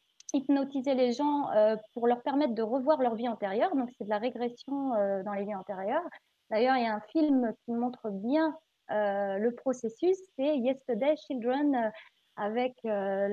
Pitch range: 215-265 Hz